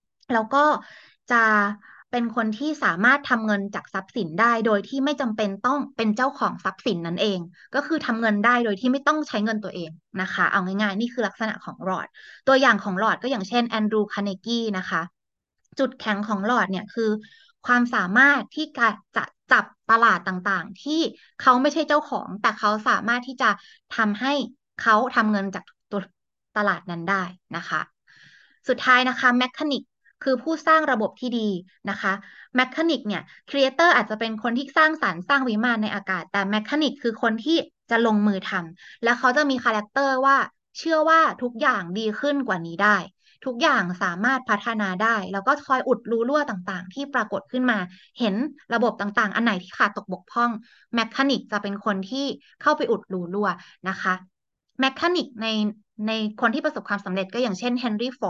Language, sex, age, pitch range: Thai, female, 20-39, 200-260 Hz